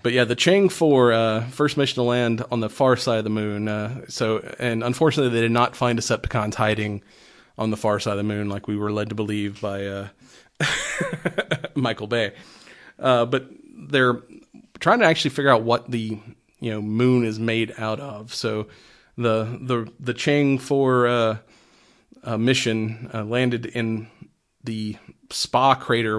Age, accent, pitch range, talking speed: 30-49, American, 110-125 Hz, 175 wpm